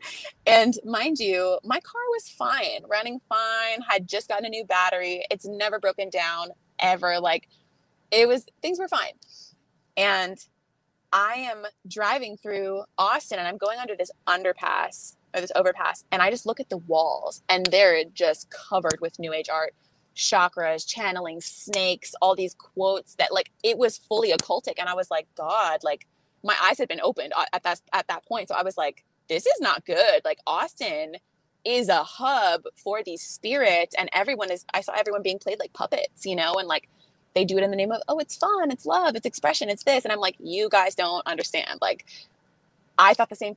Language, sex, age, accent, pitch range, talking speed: English, female, 20-39, American, 180-255 Hz, 195 wpm